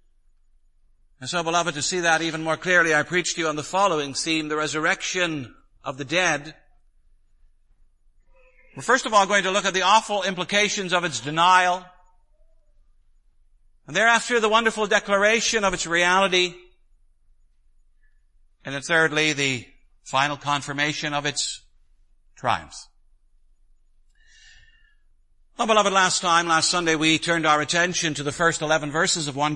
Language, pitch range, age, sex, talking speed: English, 155-220 Hz, 60-79, male, 145 wpm